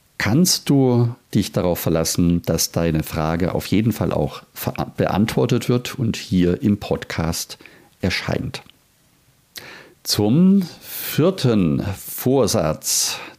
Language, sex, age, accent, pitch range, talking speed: German, male, 50-69, German, 95-130 Hz, 100 wpm